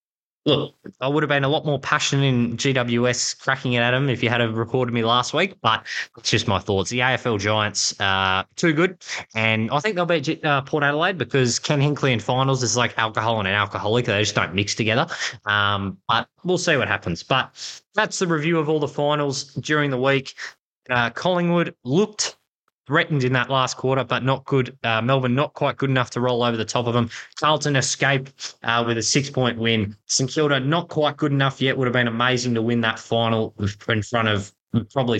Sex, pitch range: male, 105-135 Hz